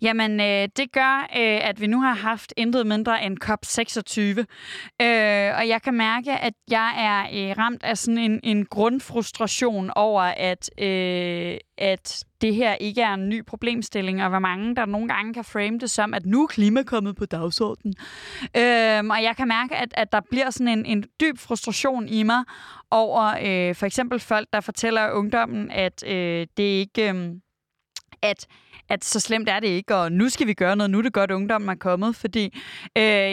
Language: Danish